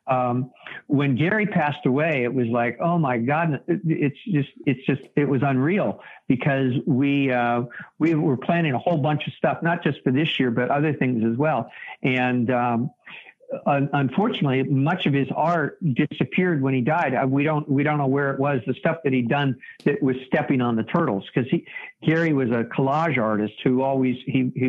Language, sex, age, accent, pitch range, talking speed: English, male, 50-69, American, 120-145 Hz, 195 wpm